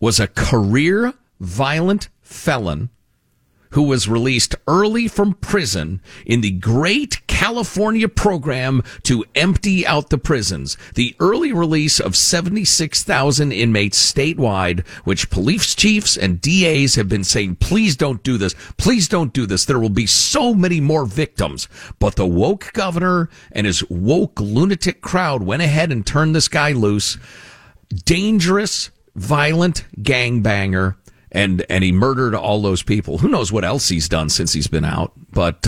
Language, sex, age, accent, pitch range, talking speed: English, male, 50-69, American, 100-160 Hz, 150 wpm